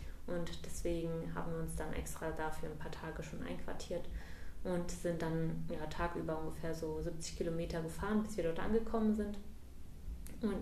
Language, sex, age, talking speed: German, female, 30-49, 165 wpm